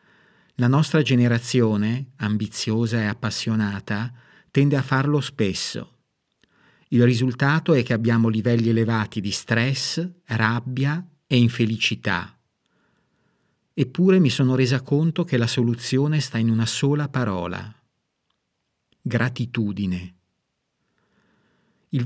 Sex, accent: male, native